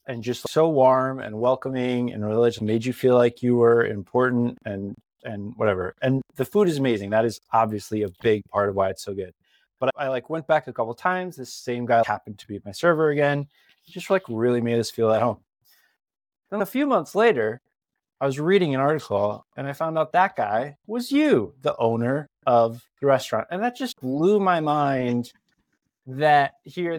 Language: English